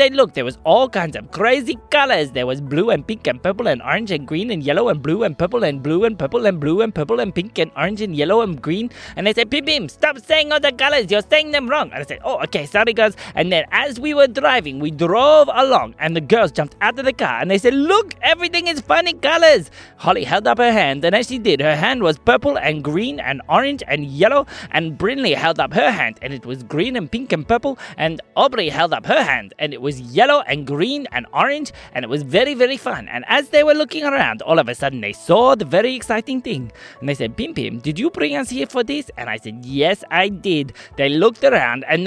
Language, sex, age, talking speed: English, male, 20-39, 255 wpm